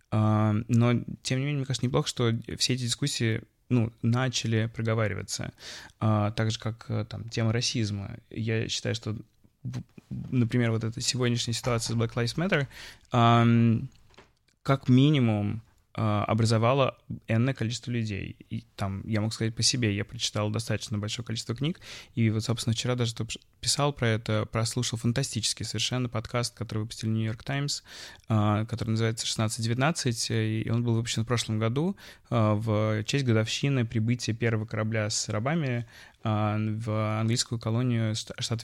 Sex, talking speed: male, 135 wpm